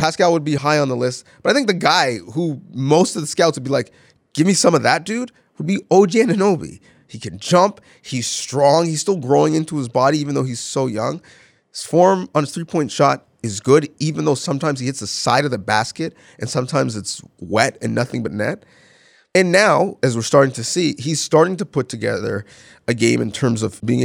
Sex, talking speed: male, 225 wpm